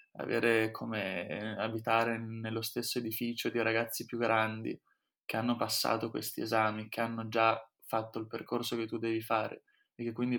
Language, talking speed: Italian, 160 wpm